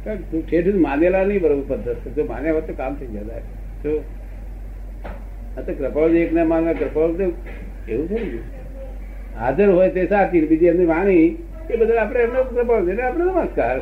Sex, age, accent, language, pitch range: male, 60-79, native, Gujarati, 115-175 Hz